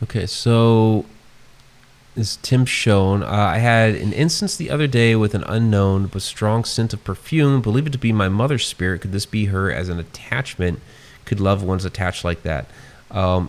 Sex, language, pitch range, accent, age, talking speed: male, English, 90-120 Hz, American, 30-49, 185 wpm